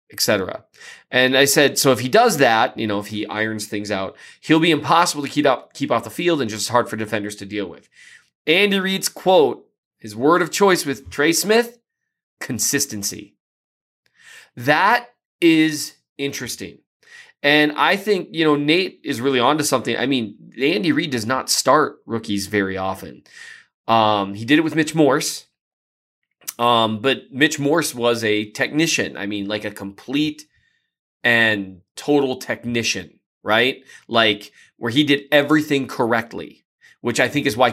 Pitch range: 110-160 Hz